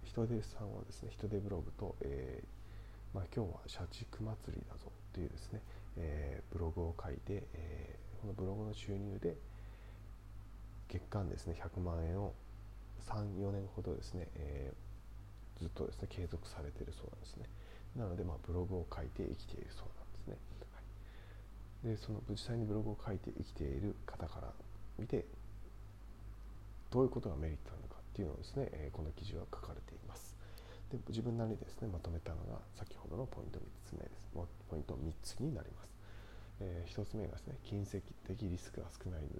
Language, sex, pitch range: Japanese, male, 90-105 Hz